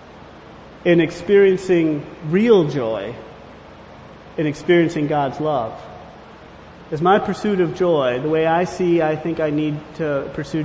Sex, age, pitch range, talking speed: male, 40-59, 150-180 Hz, 130 wpm